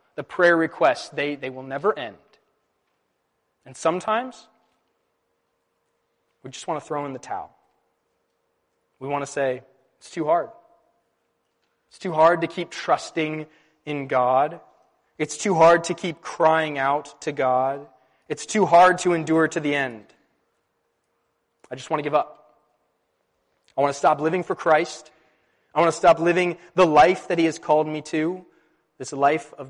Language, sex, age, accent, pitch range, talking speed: English, male, 20-39, American, 140-200 Hz, 160 wpm